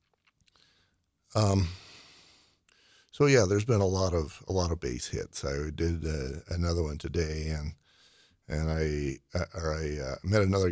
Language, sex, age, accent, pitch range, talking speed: English, male, 50-69, American, 75-95 Hz, 155 wpm